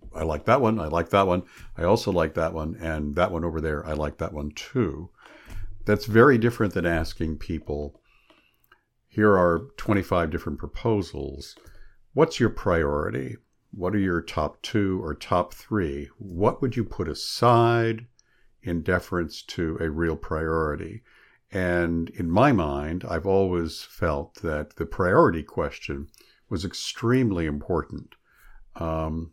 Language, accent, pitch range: English, American, 80-105 Hz